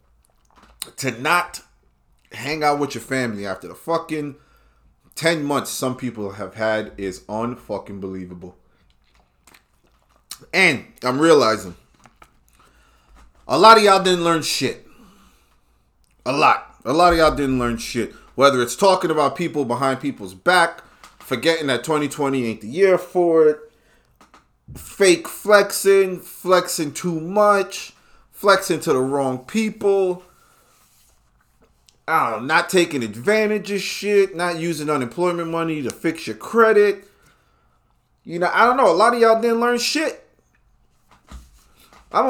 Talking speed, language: 130 wpm, English